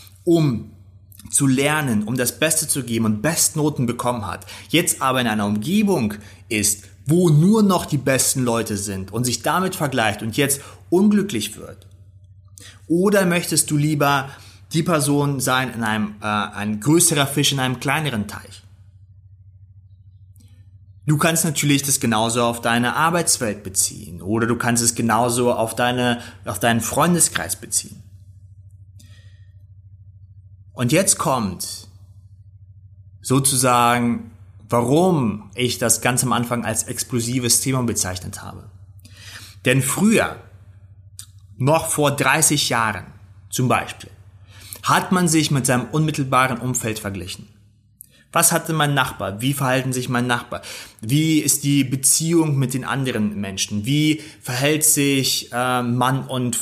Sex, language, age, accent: male, German, 30-49, German